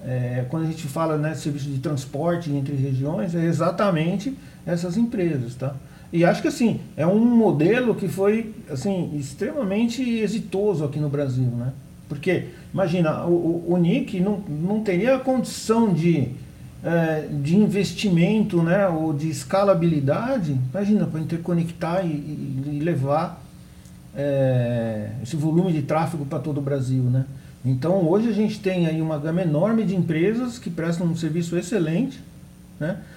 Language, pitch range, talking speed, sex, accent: Portuguese, 150-205 Hz, 150 wpm, male, Brazilian